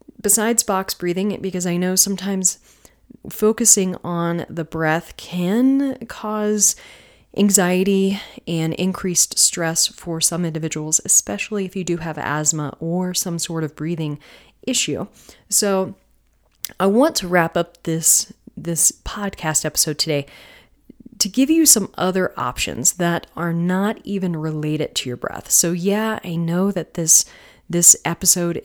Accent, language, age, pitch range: American, English, 30-49, 165-200 Hz